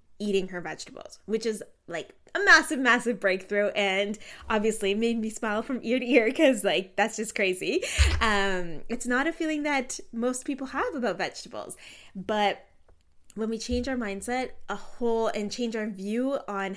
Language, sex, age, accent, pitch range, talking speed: English, female, 10-29, American, 195-260 Hz, 170 wpm